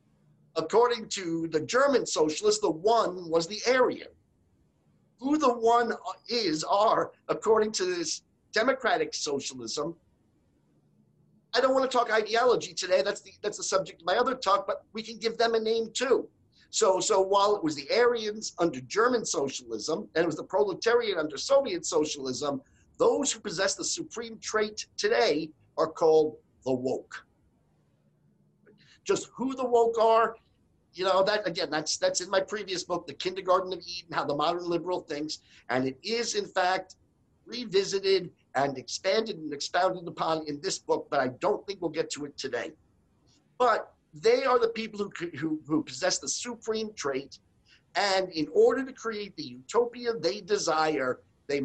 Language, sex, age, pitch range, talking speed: English, male, 50-69, 155-230 Hz, 165 wpm